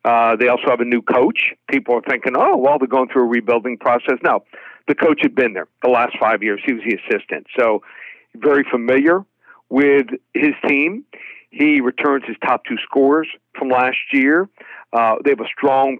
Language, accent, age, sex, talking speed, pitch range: English, American, 60-79, male, 195 wpm, 125-155 Hz